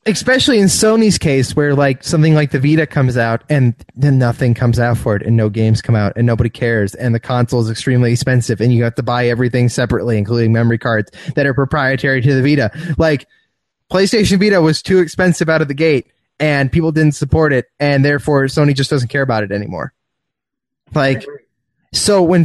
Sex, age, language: male, 20-39, English